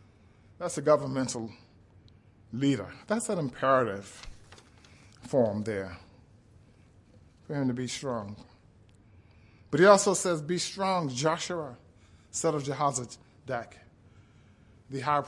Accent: American